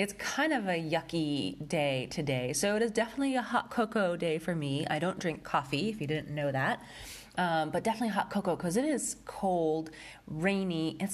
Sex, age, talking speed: female, 30-49, 200 wpm